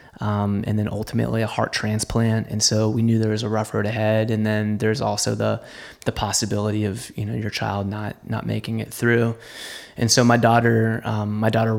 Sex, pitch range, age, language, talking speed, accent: male, 110-115 Hz, 20-39, English, 210 wpm, American